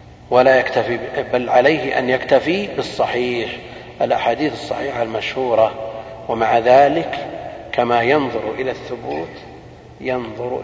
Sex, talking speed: male, 95 wpm